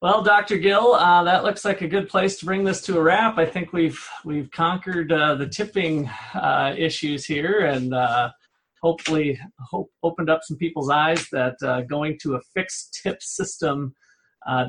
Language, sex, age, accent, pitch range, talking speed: English, male, 40-59, American, 140-180 Hz, 190 wpm